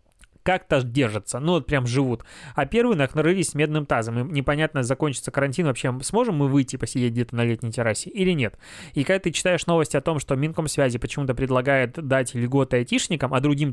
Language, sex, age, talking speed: Russian, male, 20-39, 185 wpm